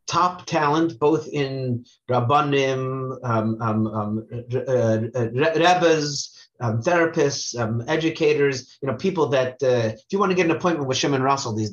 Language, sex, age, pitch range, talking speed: English, male, 30-49, 125-145 Hz, 150 wpm